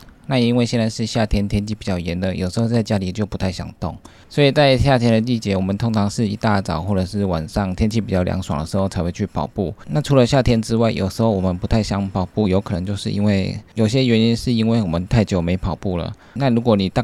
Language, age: Chinese, 20-39